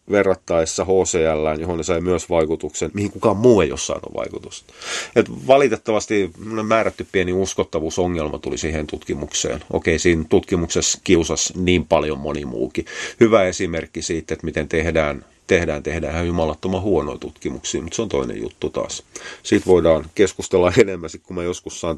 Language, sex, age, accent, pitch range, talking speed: Finnish, male, 30-49, native, 80-95 Hz, 150 wpm